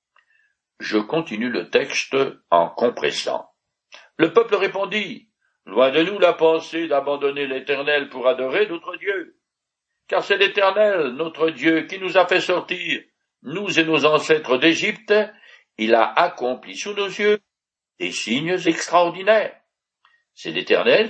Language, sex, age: French, male, 60-79